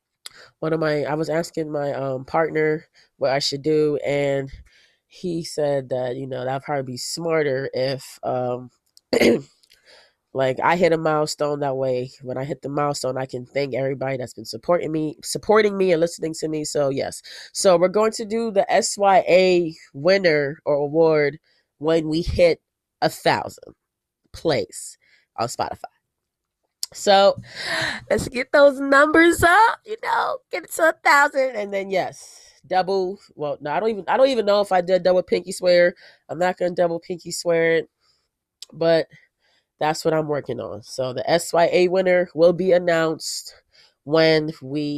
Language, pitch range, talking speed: English, 150-200 Hz, 165 wpm